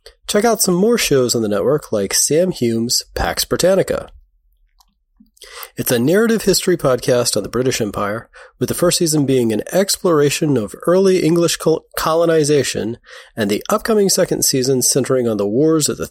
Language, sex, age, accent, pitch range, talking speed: English, male, 30-49, American, 120-175 Hz, 165 wpm